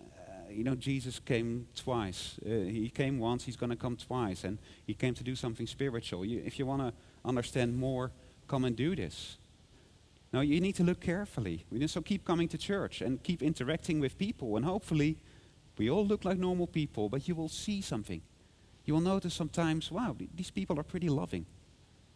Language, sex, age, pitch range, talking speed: English, male, 40-59, 105-140 Hz, 190 wpm